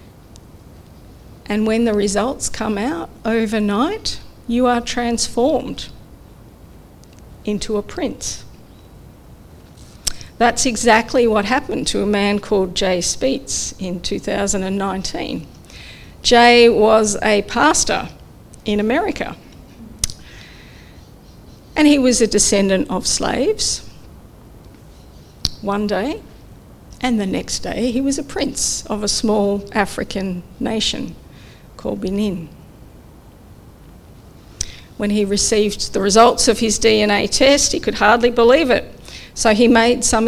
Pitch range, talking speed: 205-240 Hz, 110 wpm